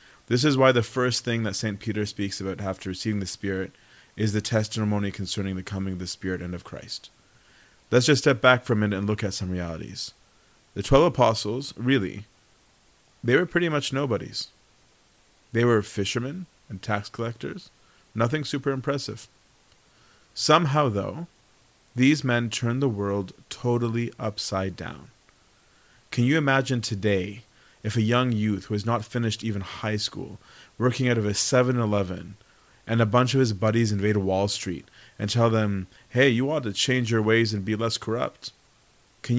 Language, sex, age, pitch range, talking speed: English, male, 30-49, 105-125 Hz, 170 wpm